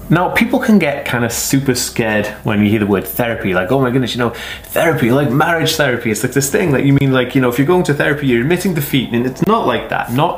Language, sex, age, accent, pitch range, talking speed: English, male, 20-39, British, 105-140 Hz, 280 wpm